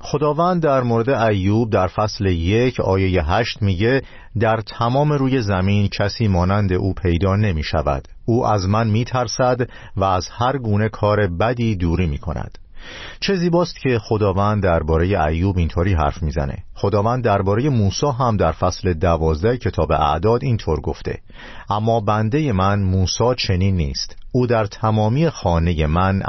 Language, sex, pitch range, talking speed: Persian, male, 90-120 Hz, 145 wpm